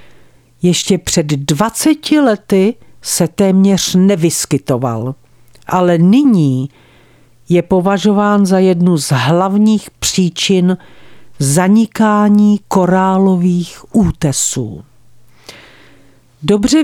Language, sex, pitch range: Czech, female, 155-210 Hz